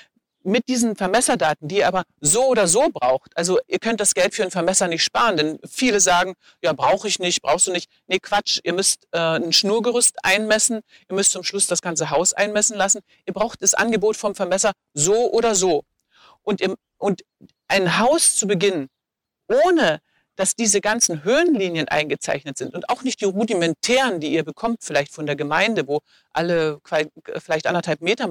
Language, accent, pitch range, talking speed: German, German, 165-220 Hz, 180 wpm